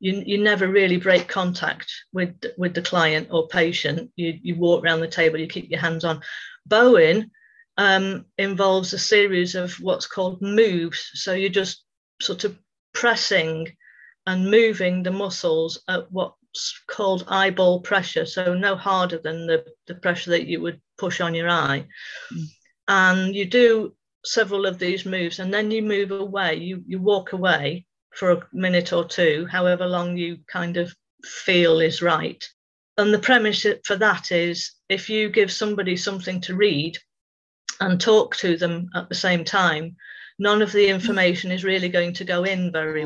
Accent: British